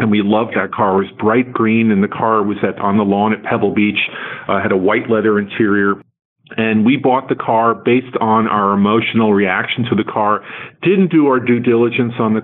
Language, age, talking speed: English, 40-59, 220 wpm